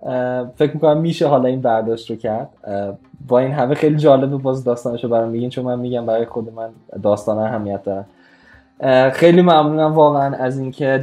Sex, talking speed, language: male, 170 wpm, Persian